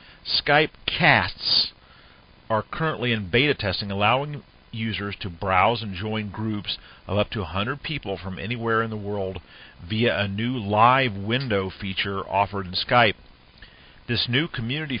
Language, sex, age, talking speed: English, male, 50-69, 145 wpm